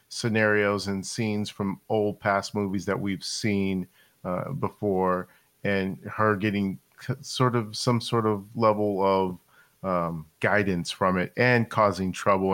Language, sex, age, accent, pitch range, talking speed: English, male, 40-59, American, 95-110 Hz, 140 wpm